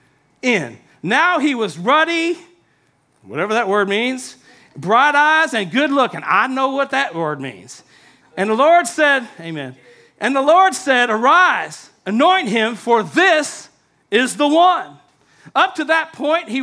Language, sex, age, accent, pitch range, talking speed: English, male, 50-69, American, 230-310 Hz, 150 wpm